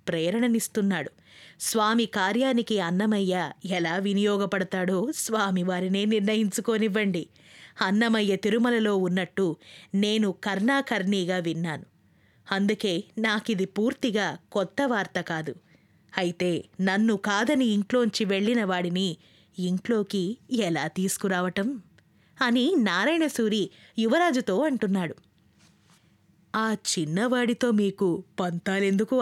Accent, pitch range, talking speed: native, 180-220 Hz, 75 wpm